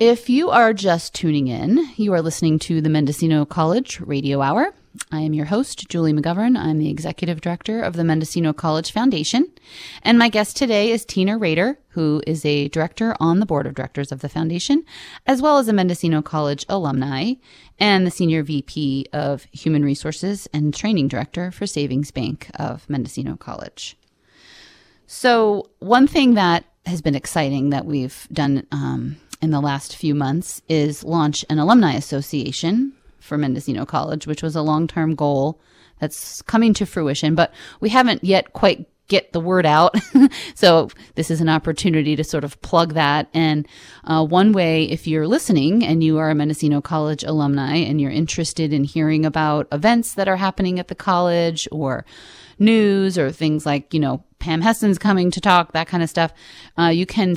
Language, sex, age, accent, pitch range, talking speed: English, female, 30-49, American, 150-195 Hz, 180 wpm